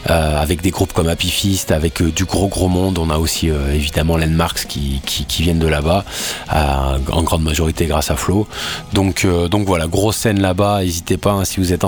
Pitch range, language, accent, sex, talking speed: 85-110 Hz, French, French, male, 220 wpm